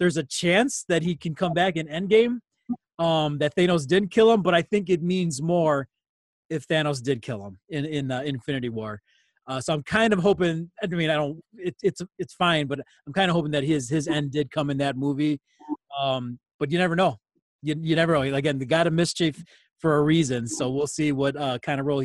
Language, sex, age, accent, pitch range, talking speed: English, male, 30-49, American, 140-170 Hz, 235 wpm